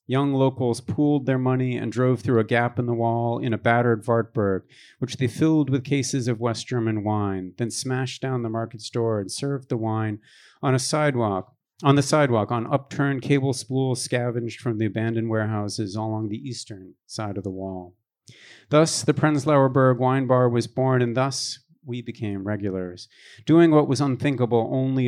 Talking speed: 180 wpm